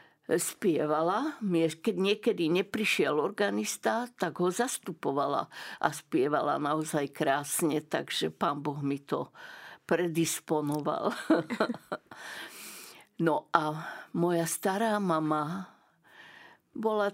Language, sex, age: Slovak, female, 50-69